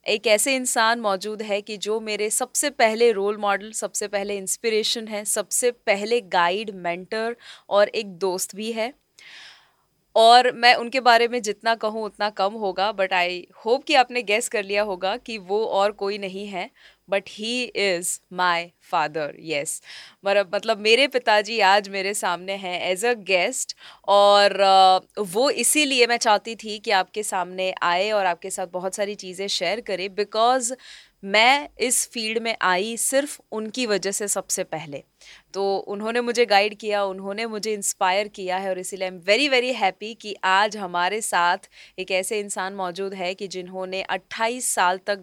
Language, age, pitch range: Hindi, 20-39, 185-220 Hz